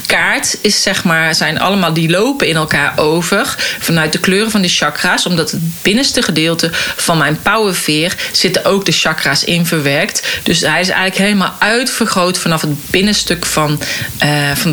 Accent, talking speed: Dutch, 170 wpm